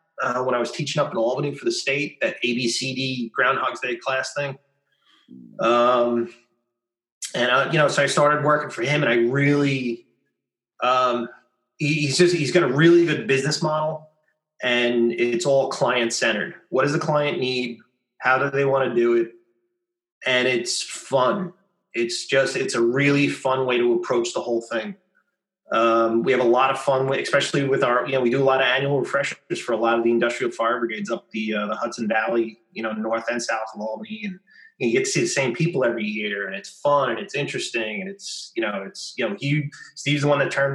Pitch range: 120-165 Hz